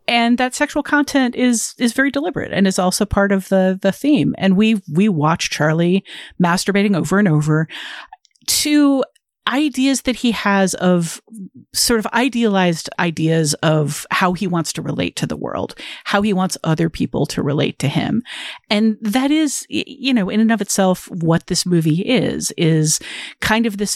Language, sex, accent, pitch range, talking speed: English, female, American, 165-225 Hz, 175 wpm